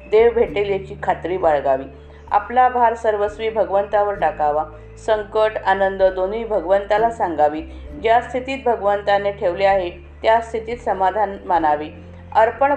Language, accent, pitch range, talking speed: Marathi, native, 185-230 Hz, 110 wpm